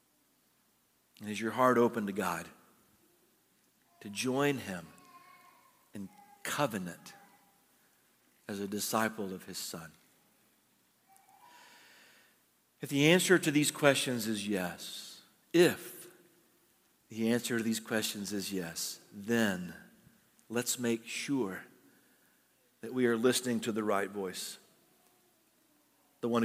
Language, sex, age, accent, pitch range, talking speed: English, male, 50-69, American, 105-130 Hz, 110 wpm